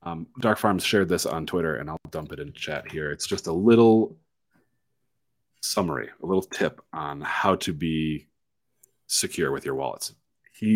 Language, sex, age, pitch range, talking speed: English, male, 30-49, 85-105 Hz, 175 wpm